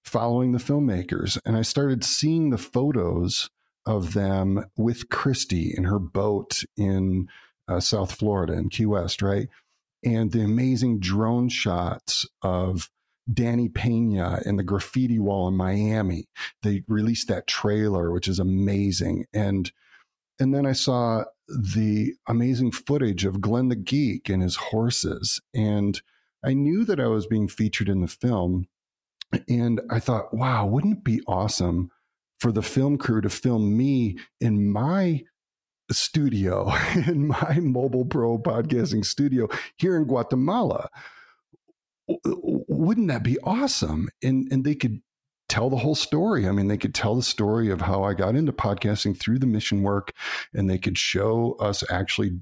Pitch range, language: 100-125 Hz, English